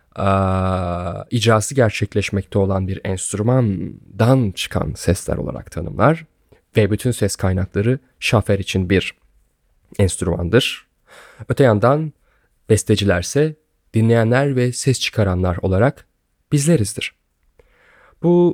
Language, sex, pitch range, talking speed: Turkish, male, 95-135 Hz, 85 wpm